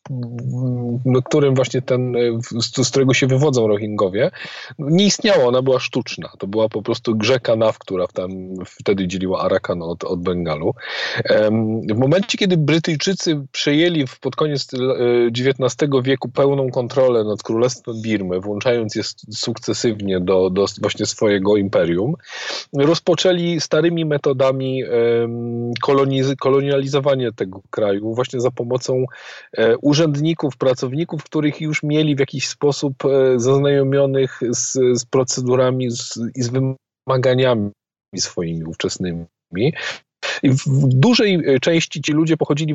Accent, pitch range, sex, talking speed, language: native, 115-140 Hz, male, 120 wpm, Polish